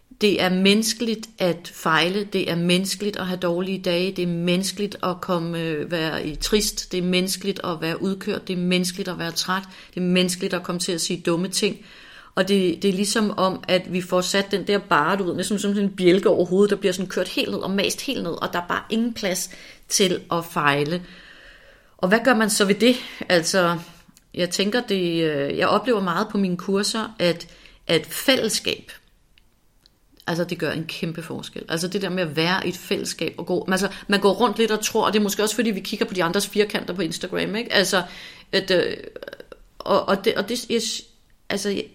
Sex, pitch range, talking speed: female, 175-210 Hz, 205 wpm